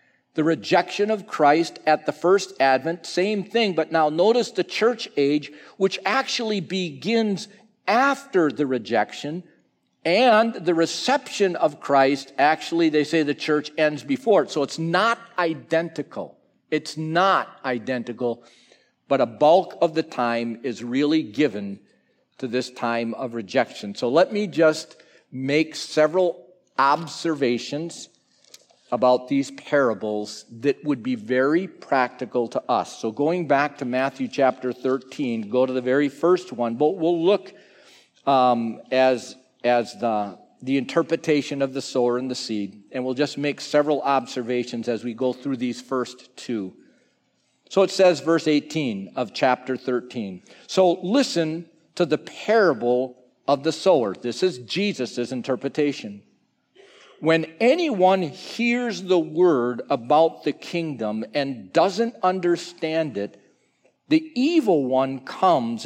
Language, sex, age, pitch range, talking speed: English, male, 50-69, 125-180 Hz, 135 wpm